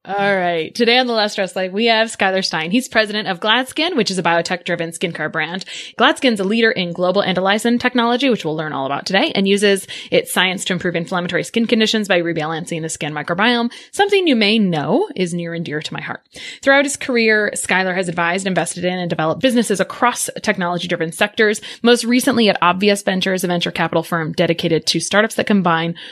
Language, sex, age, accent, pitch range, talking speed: English, female, 20-39, American, 170-215 Hz, 200 wpm